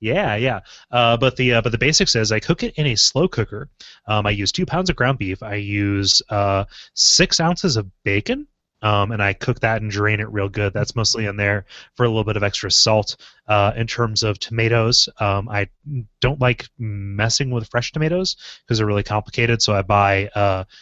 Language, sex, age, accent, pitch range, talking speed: English, male, 30-49, American, 100-115 Hz, 215 wpm